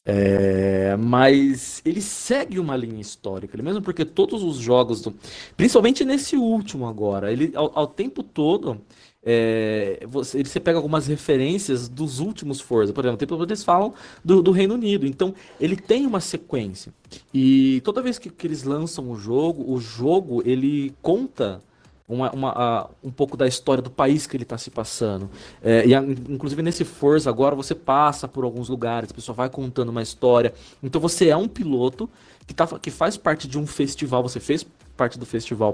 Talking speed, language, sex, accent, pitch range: 170 wpm, Portuguese, male, Brazilian, 120-160 Hz